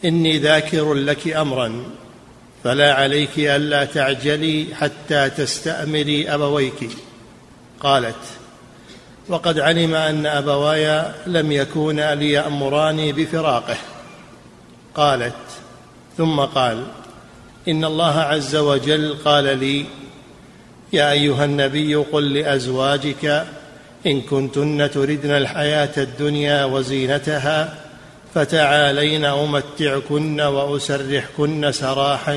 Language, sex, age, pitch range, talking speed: Arabic, male, 50-69, 140-150 Hz, 80 wpm